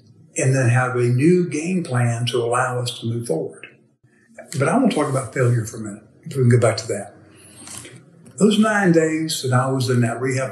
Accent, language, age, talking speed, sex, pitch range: American, English, 60-79, 220 wpm, male, 120-135 Hz